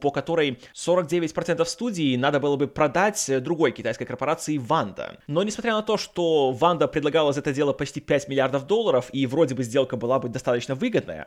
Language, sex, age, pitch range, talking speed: Russian, male, 20-39, 140-220 Hz, 185 wpm